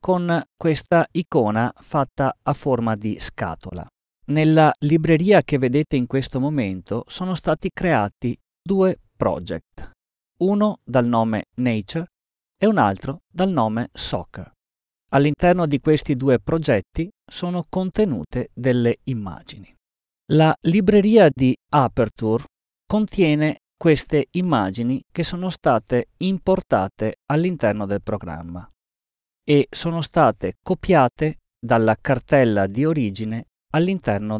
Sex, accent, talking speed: male, native, 110 wpm